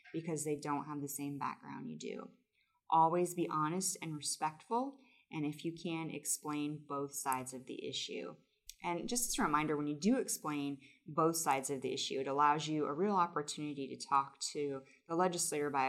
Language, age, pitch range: English, 20-39, 135-165 Hz